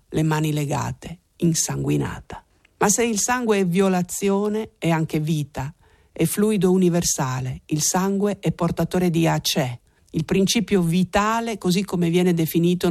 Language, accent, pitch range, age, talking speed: Italian, native, 160-200 Hz, 50-69, 135 wpm